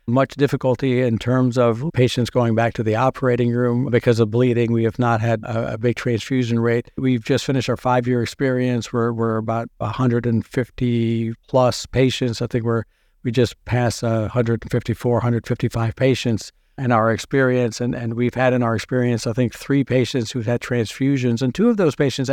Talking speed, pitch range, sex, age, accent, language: 175 wpm, 120-135 Hz, male, 60-79, American, English